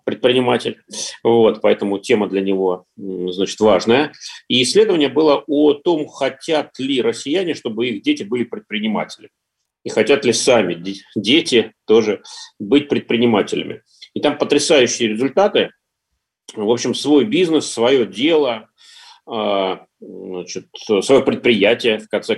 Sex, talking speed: male, 120 wpm